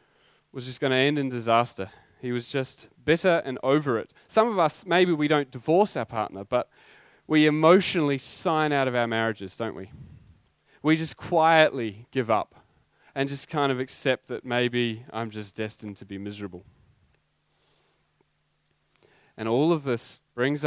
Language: English